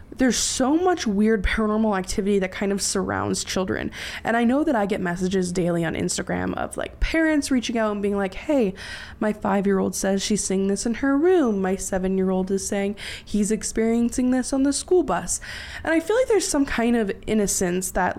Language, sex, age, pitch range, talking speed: English, female, 20-39, 195-270 Hz, 200 wpm